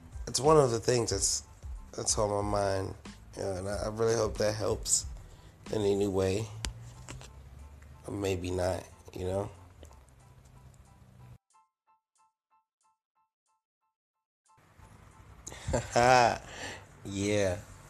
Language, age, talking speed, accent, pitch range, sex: English, 30-49, 90 wpm, American, 85-110 Hz, male